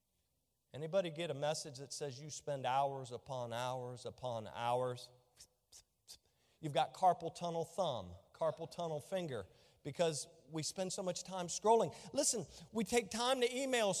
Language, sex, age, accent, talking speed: English, male, 40-59, American, 145 wpm